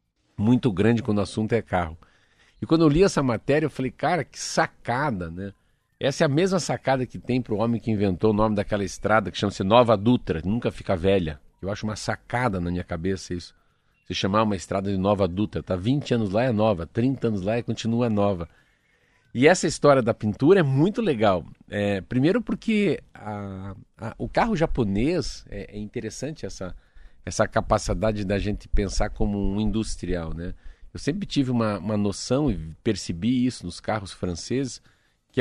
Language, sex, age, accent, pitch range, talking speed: Portuguese, male, 50-69, Brazilian, 95-130 Hz, 190 wpm